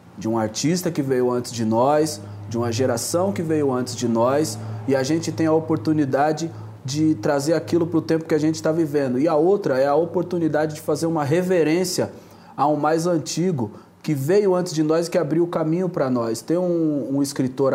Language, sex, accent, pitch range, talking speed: Portuguese, male, Brazilian, 135-170 Hz, 215 wpm